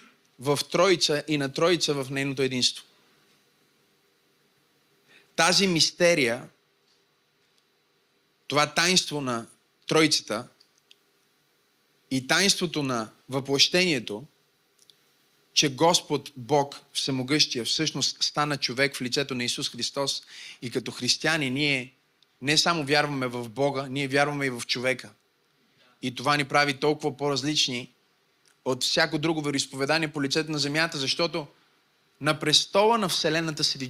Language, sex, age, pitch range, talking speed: Bulgarian, male, 30-49, 135-170 Hz, 115 wpm